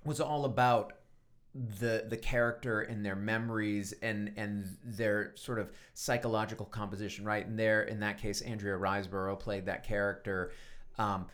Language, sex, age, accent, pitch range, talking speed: English, male, 30-49, American, 100-125 Hz, 150 wpm